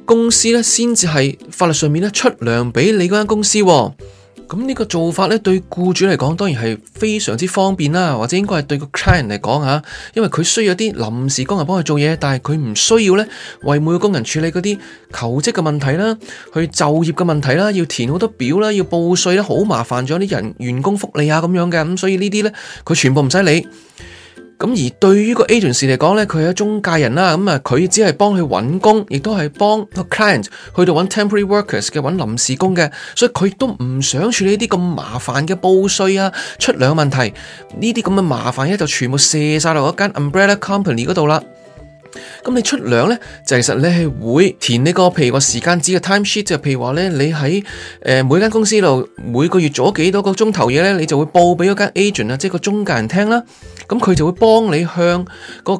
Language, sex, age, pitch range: Chinese, male, 20-39, 145-205 Hz